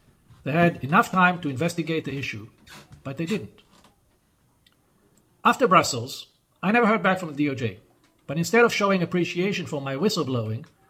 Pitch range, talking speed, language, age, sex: 135-175 Hz, 155 wpm, English, 40-59, male